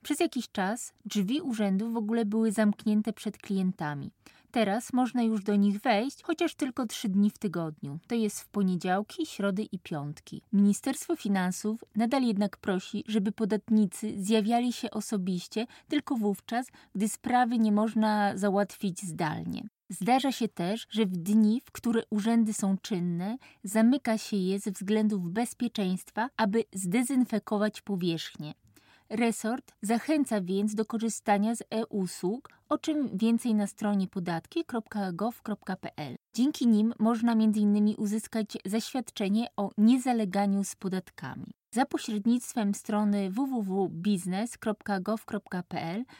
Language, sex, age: Polish, female, 20-39